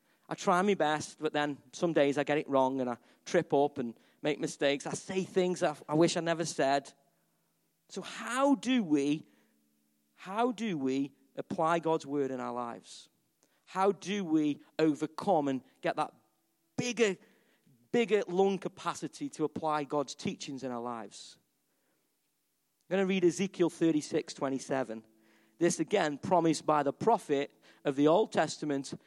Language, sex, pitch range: English, male, 140-180 Hz